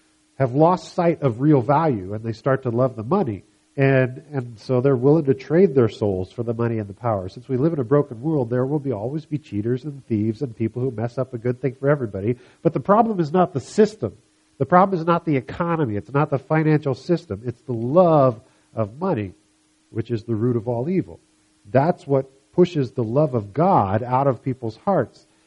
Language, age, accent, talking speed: English, 50-69, American, 220 wpm